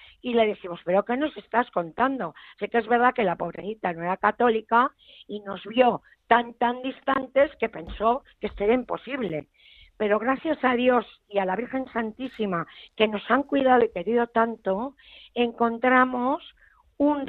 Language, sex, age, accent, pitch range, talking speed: Spanish, female, 50-69, Spanish, 205-255 Hz, 165 wpm